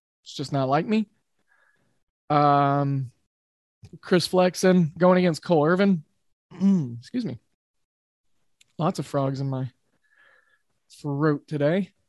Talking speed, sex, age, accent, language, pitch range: 105 wpm, male, 20-39, American, English, 145-185 Hz